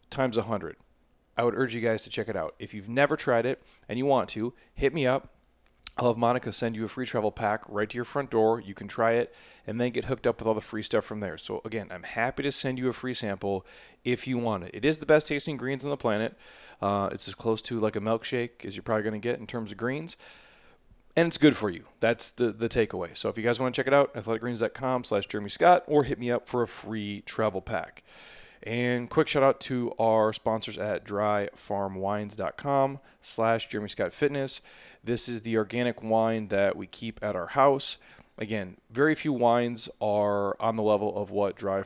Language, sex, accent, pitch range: English, male, American, 105-125 Hz